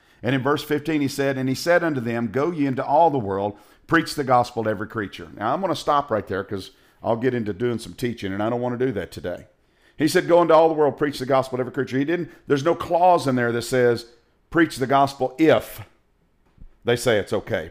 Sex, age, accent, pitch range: male, 50-69, American, 115-150 Hz